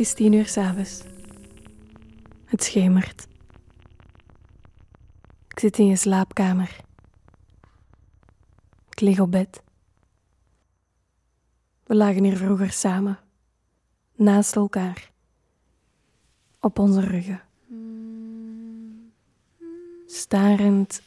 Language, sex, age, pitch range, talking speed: Dutch, female, 20-39, 175-220 Hz, 75 wpm